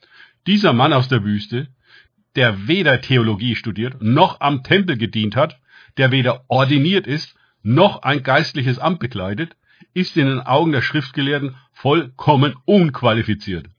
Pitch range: 115-145 Hz